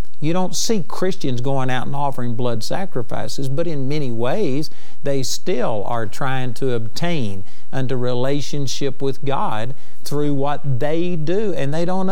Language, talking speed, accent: English, 155 wpm, American